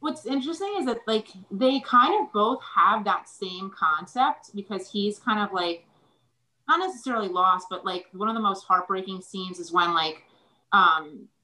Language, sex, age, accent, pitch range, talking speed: English, female, 30-49, American, 160-195 Hz, 175 wpm